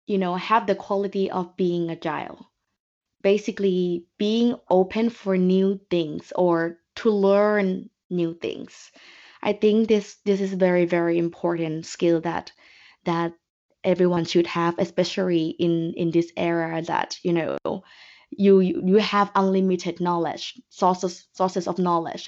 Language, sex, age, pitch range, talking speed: Vietnamese, female, 20-39, 175-210 Hz, 135 wpm